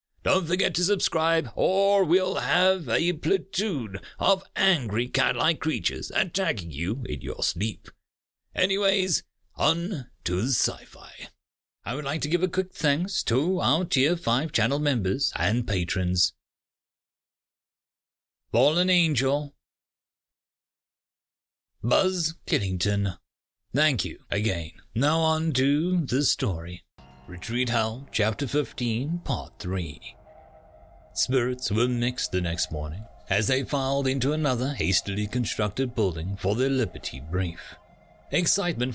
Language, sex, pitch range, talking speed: English, male, 95-150 Hz, 115 wpm